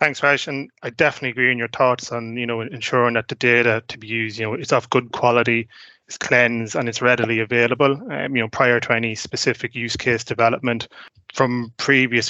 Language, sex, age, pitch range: English, male, 20-39, 115-125 Hz